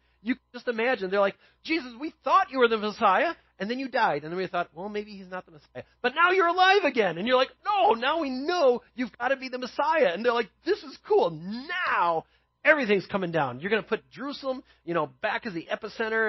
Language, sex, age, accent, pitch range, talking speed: English, male, 30-49, American, 160-235 Hz, 245 wpm